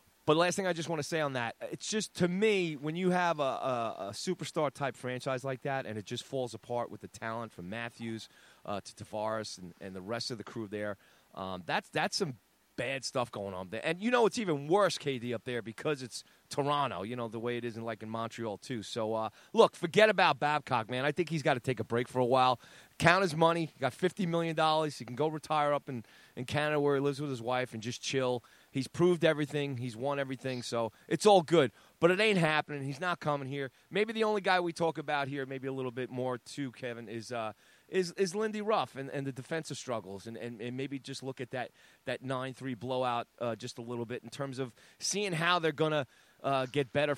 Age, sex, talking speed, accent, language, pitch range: 30-49, male, 245 wpm, American, English, 120-155 Hz